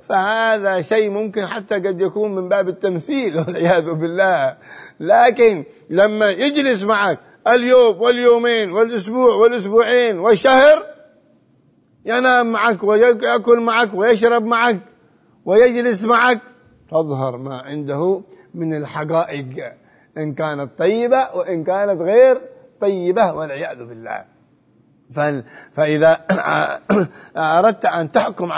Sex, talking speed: male, 95 wpm